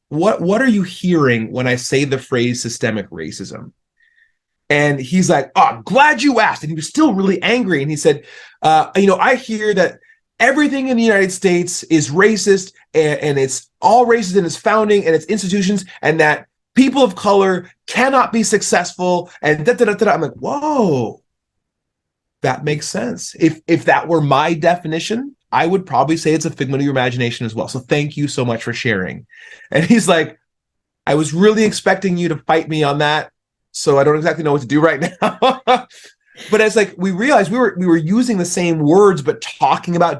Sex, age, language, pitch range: male, 30-49, English, 145-210 Hz